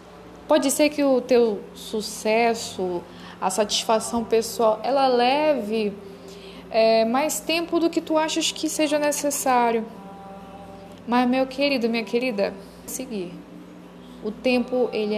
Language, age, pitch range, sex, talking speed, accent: Portuguese, 10-29, 210-270 Hz, female, 120 wpm, Brazilian